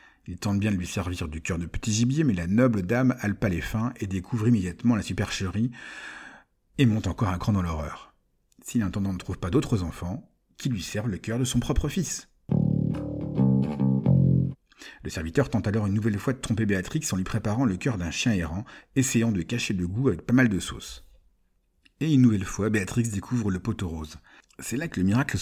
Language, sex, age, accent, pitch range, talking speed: French, male, 50-69, French, 90-120 Hz, 210 wpm